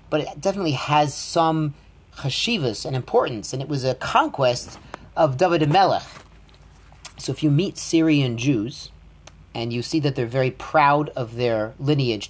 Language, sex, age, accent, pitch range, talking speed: English, male, 40-59, American, 125-155 Hz, 160 wpm